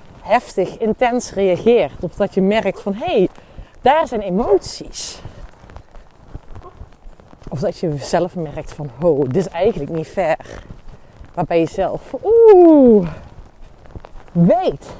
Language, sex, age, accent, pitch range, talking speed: Dutch, female, 30-49, Dutch, 160-215 Hz, 120 wpm